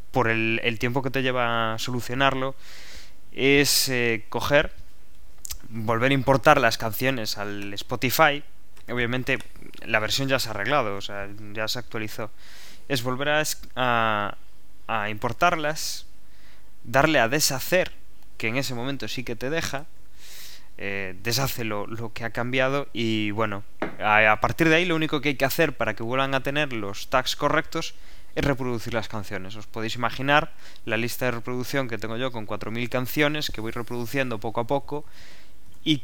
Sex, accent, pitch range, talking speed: male, Spanish, 110-135 Hz, 165 wpm